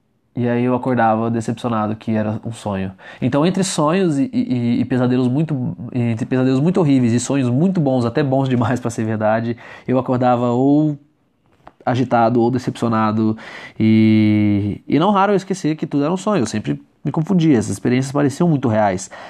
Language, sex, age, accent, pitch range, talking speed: Portuguese, male, 20-39, Brazilian, 110-130 Hz, 175 wpm